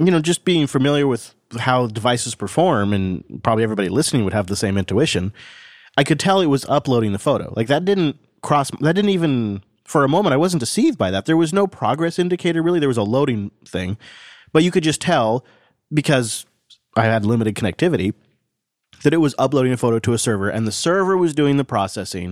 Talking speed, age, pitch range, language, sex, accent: 210 wpm, 30-49, 110-150 Hz, English, male, American